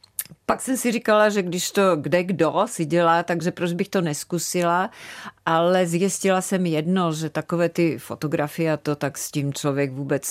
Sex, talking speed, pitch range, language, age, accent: female, 180 wpm, 155-190 Hz, Czech, 40-59, native